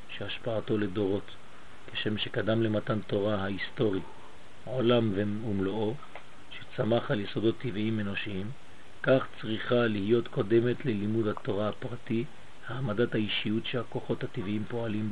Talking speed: 105 wpm